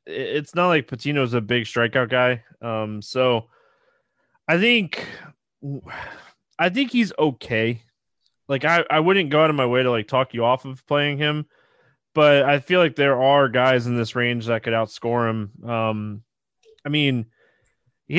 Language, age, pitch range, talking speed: English, 20-39, 120-165 Hz, 170 wpm